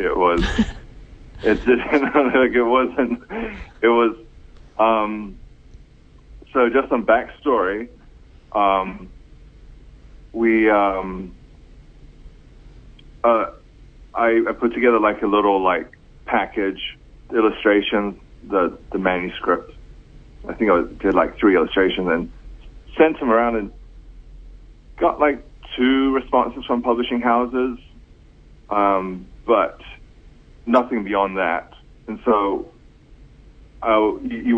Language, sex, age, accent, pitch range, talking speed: English, male, 30-49, American, 90-120 Hz, 100 wpm